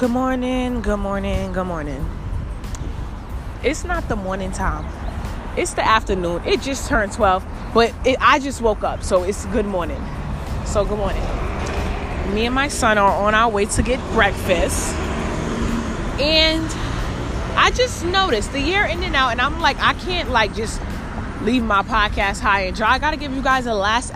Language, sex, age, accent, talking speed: English, female, 20-39, American, 180 wpm